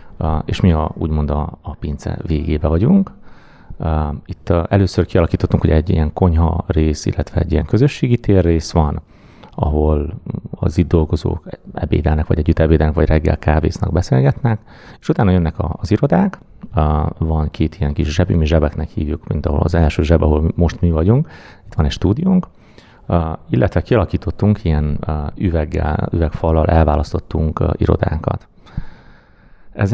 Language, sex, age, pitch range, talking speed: Hungarian, male, 30-49, 80-100 Hz, 155 wpm